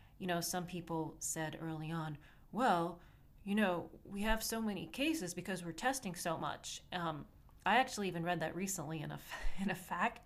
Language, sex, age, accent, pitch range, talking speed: English, female, 30-49, American, 165-205 Hz, 180 wpm